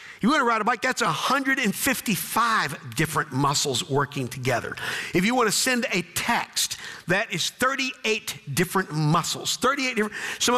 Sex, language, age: male, English, 50-69